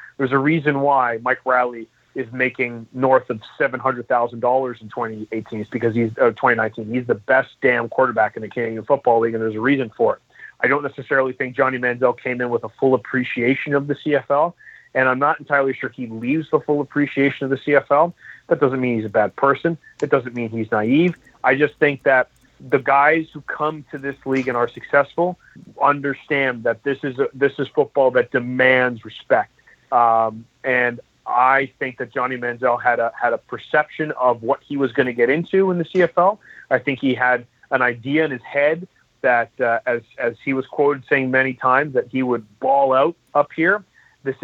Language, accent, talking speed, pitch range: English, American, 200 wpm, 120-140 Hz